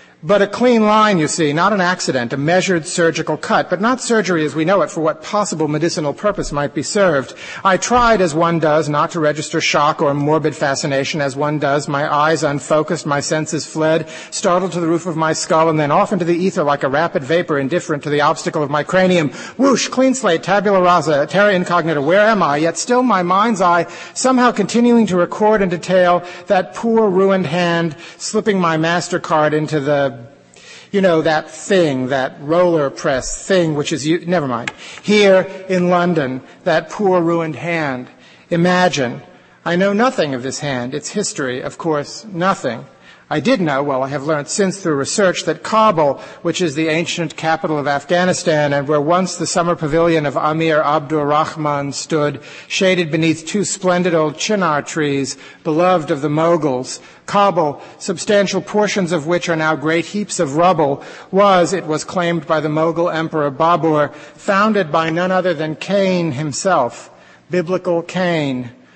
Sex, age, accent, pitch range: male, 50-69, American, 150-185 Hz